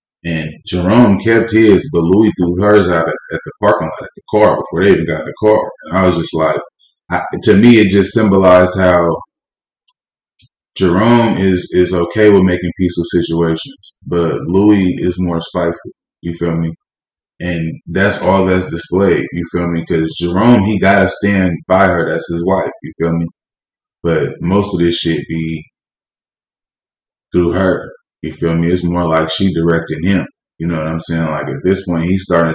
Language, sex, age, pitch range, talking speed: English, male, 20-39, 85-95 Hz, 185 wpm